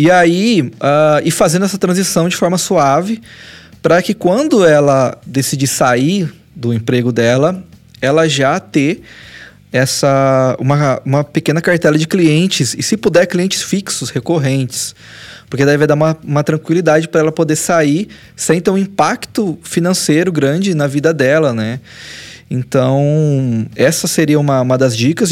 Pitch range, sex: 130-170 Hz, male